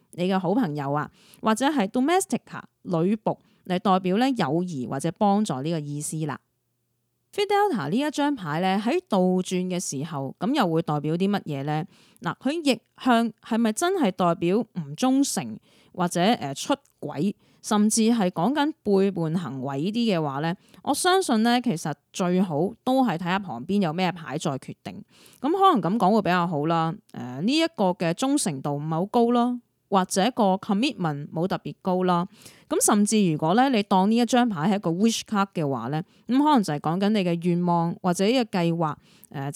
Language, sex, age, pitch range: Chinese, female, 30-49, 165-235 Hz